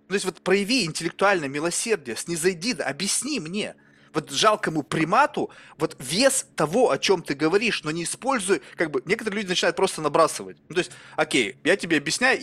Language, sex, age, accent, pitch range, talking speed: Russian, male, 20-39, native, 150-210 Hz, 185 wpm